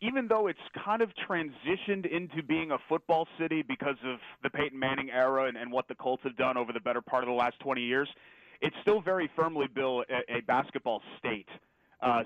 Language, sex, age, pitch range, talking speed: English, male, 30-49, 125-150 Hz, 210 wpm